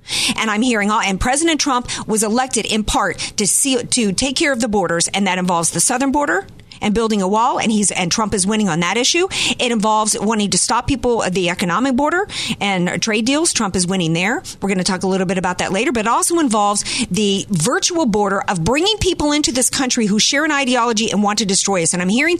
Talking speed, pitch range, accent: 240 wpm, 190-260 Hz, American